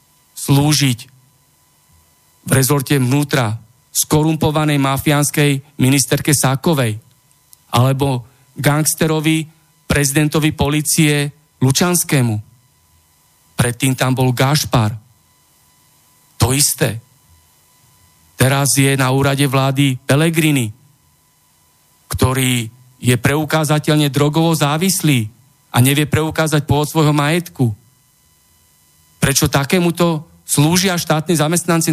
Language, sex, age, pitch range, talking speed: Slovak, male, 40-59, 125-160 Hz, 80 wpm